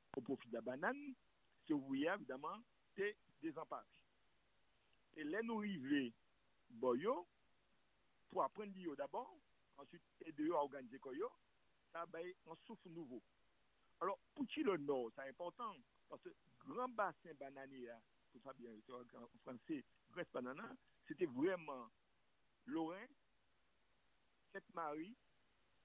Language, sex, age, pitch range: French, male, 60-79, 145-240 Hz